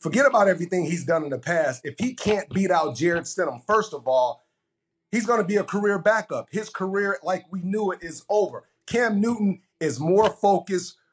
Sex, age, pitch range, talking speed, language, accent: male, 40-59, 155-200 Hz, 205 wpm, English, American